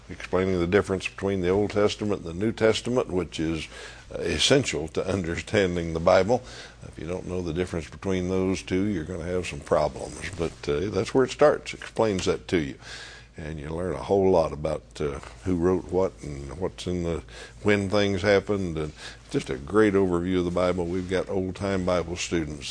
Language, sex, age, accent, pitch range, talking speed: English, male, 60-79, American, 85-95 Hz, 195 wpm